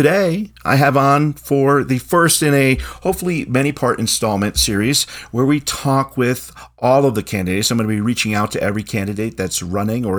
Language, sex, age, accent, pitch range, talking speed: English, male, 40-59, American, 100-135 Hz, 195 wpm